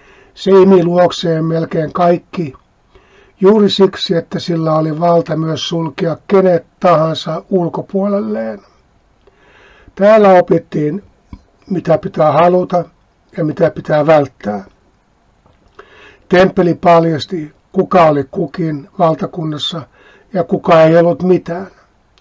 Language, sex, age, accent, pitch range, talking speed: Finnish, male, 60-79, native, 155-185 Hz, 95 wpm